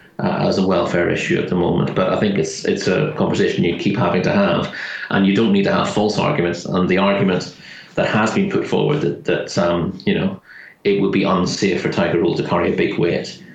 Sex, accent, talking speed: male, British, 230 wpm